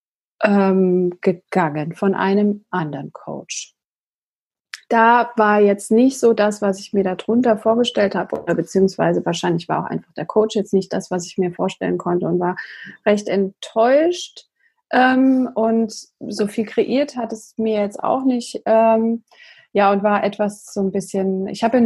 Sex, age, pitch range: female, 30-49, 195-245 Hz